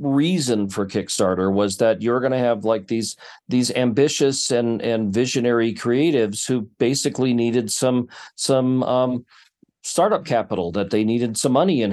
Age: 50-69